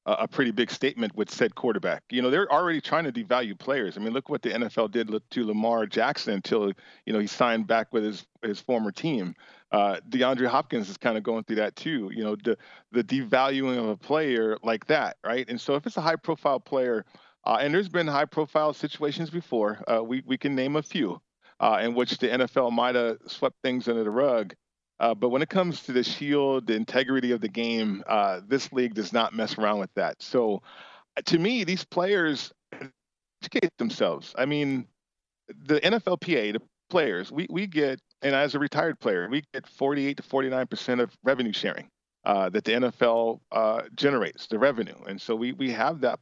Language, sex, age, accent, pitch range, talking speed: English, male, 40-59, American, 115-145 Hz, 205 wpm